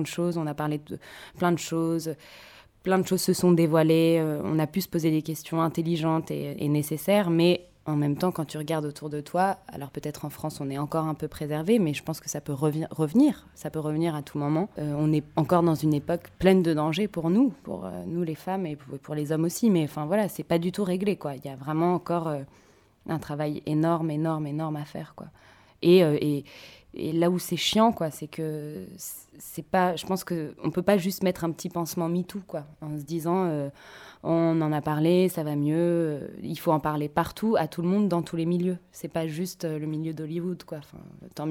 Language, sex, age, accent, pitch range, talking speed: French, female, 20-39, French, 150-175 Hz, 245 wpm